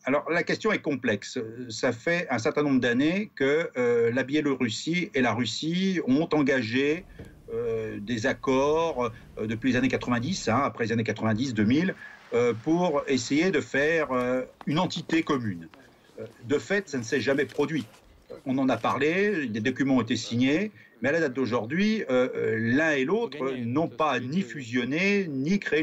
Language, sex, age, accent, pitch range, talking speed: French, male, 50-69, French, 125-185 Hz, 175 wpm